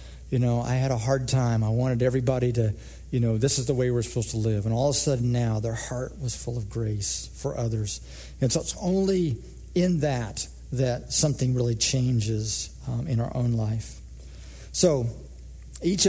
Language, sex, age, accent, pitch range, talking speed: English, male, 50-69, American, 105-135 Hz, 195 wpm